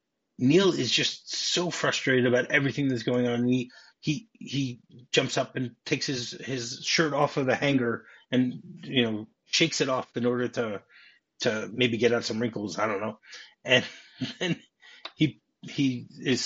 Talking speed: 170 wpm